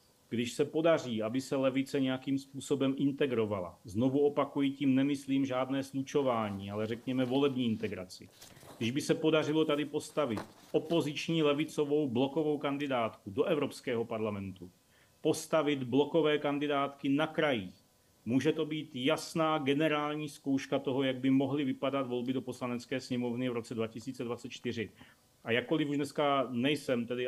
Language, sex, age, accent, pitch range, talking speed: Czech, male, 40-59, native, 120-145 Hz, 135 wpm